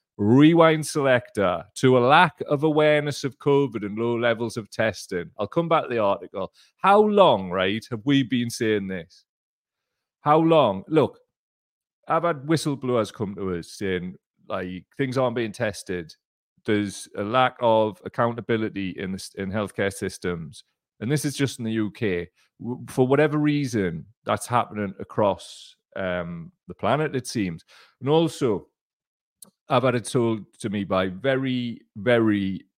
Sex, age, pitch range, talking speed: male, 30-49, 95-130 Hz, 145 wpm